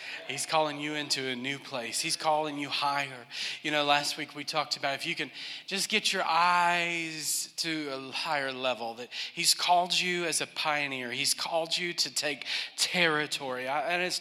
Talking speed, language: 185 wpm, English